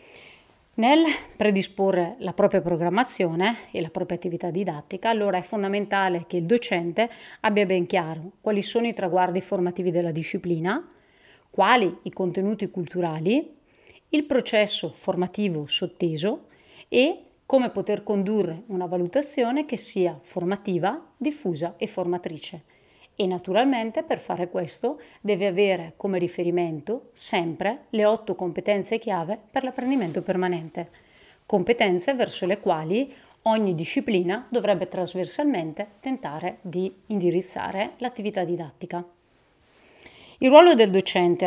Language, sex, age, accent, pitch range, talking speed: Italian, female, 30-49, native, 175-225 Hz, 115 wpm